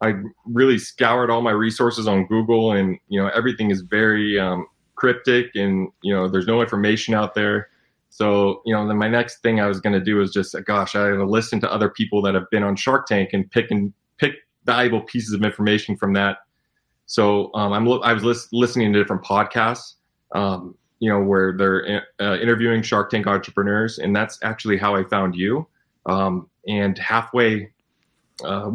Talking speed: 200 wpm